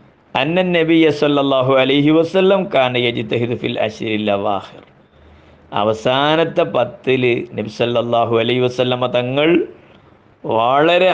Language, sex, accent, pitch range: Malayalam, male, native, 120-150 Hz